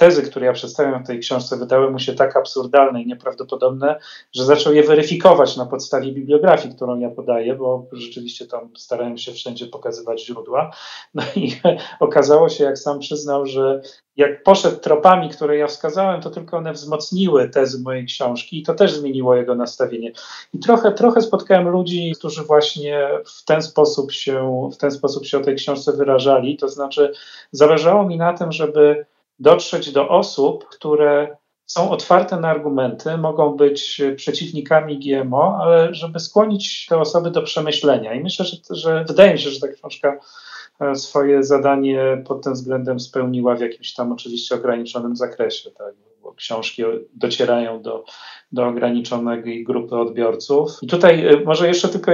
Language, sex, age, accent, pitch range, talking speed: Polish, male, 40-59, native, 130-165 Hz, 160 wpm